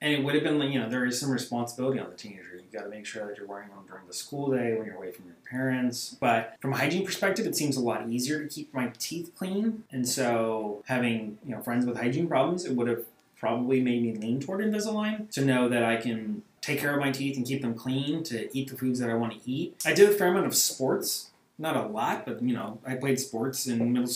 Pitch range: 120-155 Hz